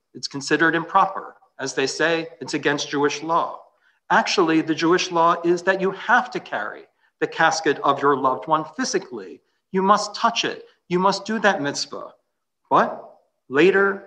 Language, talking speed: English, 160 wpm